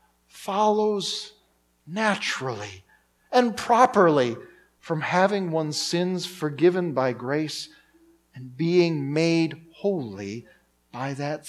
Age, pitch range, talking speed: 40-59, 120-185 Hz, 90 wpm